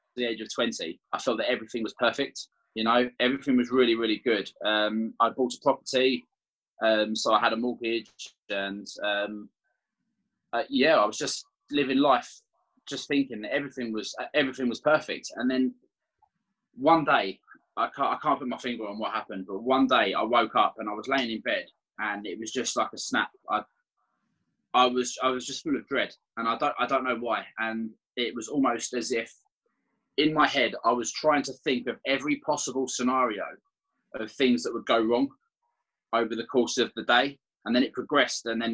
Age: 20-39